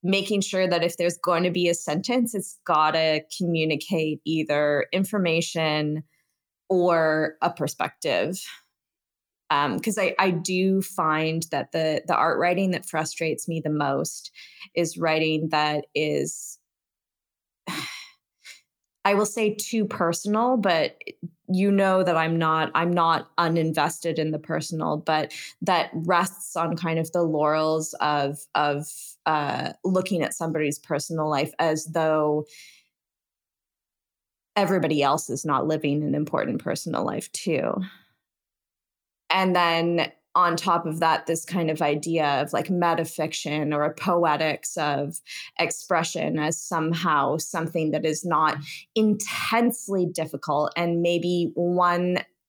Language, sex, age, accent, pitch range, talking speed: English, female, 20-39, American, 155-185 Hz, 130 wpm